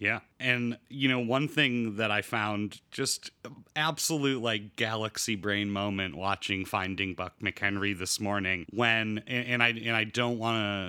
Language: English